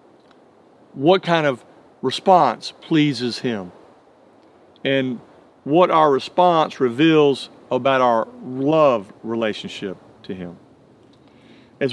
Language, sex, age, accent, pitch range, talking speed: English, male, 50-69, American, 130-170 Hz, 90 wpm